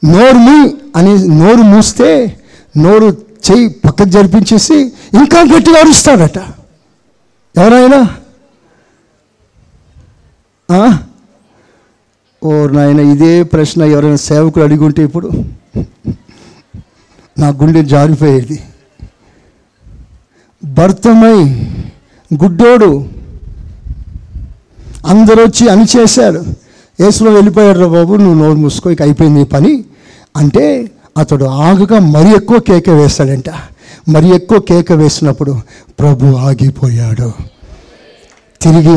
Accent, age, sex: native, 50-69, male